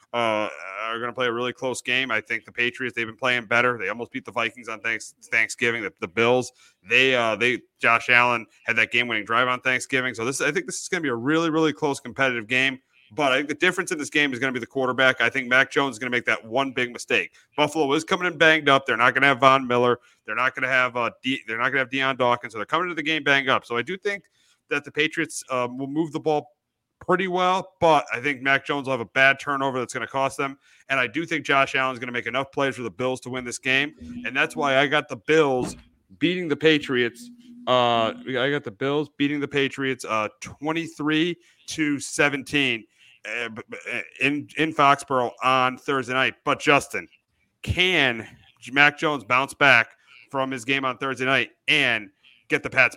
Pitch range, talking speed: 125-145 Hz, 230 wpm